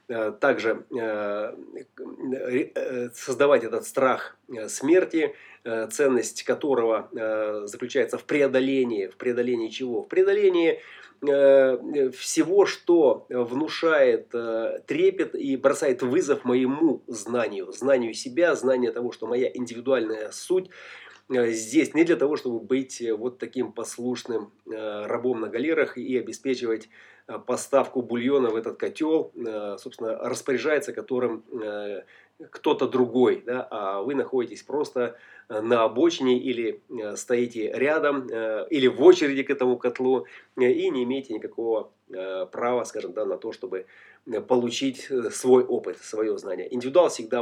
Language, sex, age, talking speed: Russian, male, 30-49, 110 wpm